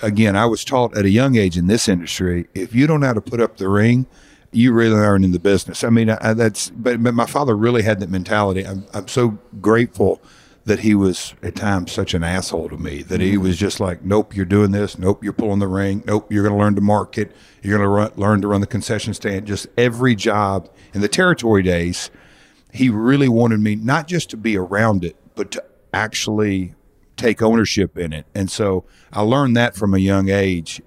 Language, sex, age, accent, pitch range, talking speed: English, male, 50-69, American, 95-110 Hz, 220 wpm